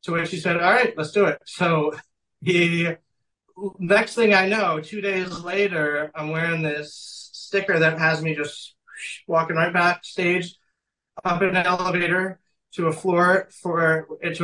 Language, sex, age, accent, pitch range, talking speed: English, male, 30-49, American, 160-195 Hz, 160 wpm